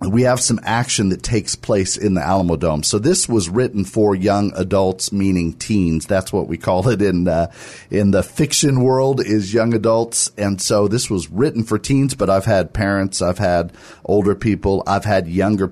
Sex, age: male, 50-69